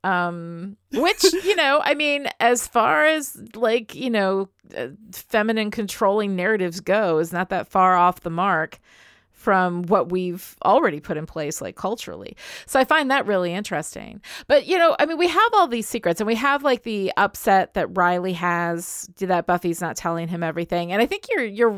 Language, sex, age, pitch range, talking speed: English, female, 30-49, 175-230 Hz, 185 wpm